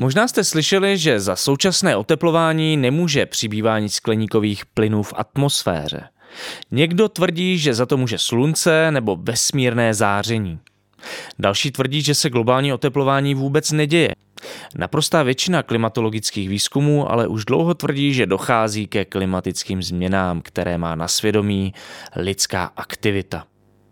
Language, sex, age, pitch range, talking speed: Czech, male, 20-39, 105-145 Hz, 125 wpm